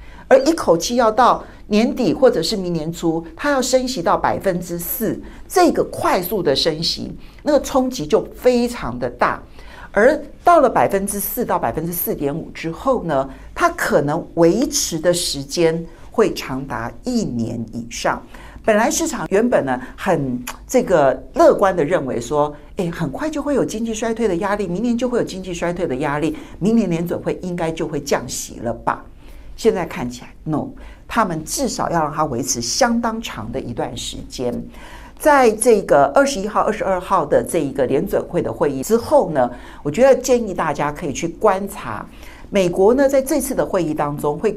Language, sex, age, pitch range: Chinese, male, 50-69, 155-250 Hz